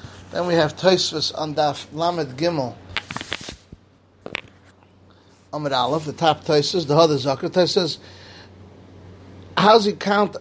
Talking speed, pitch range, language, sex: 120 wpm, 125-170 Hz, English, male